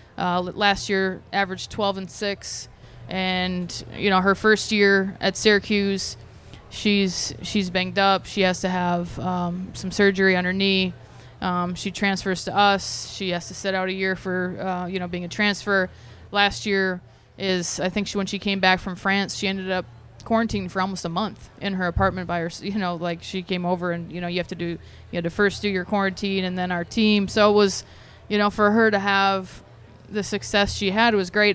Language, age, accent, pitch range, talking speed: English, 20-39, American, 175-200 Hz, 220 wpm